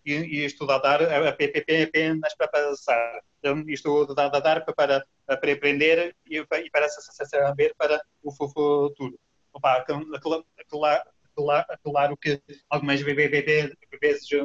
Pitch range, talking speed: 135-155 Hz, 135 wpm